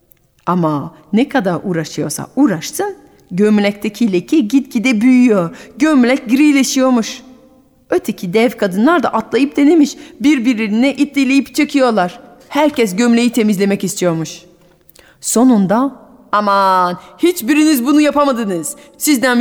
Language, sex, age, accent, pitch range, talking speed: Turkish, female, 40-59, native, 190-285 Hz, 95 wpm